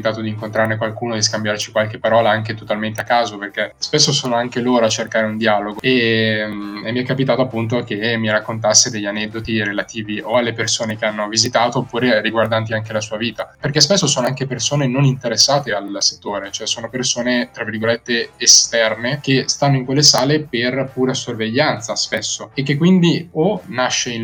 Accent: native